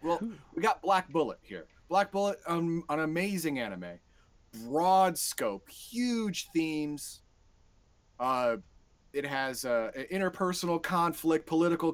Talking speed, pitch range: 115 wpm, 105-170 Hz